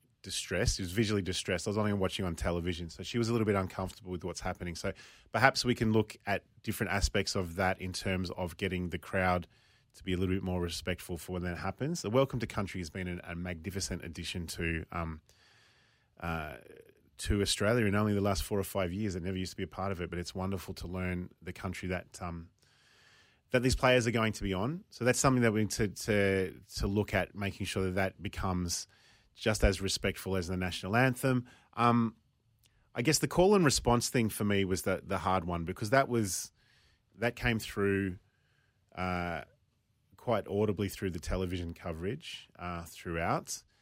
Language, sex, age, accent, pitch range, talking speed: English, male, 30-49, Australian, 90-115 Hz, 205 wpm